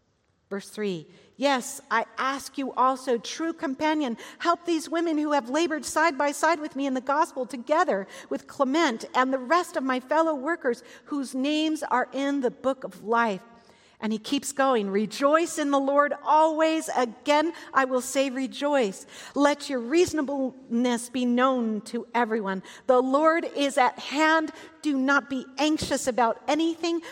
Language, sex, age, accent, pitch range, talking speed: English, female, 50-69, American, 210-285 Hz, 160 wpm